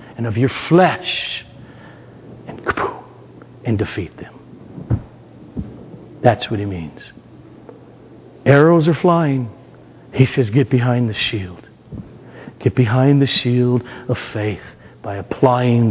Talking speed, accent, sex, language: 110 wpm, American, male, English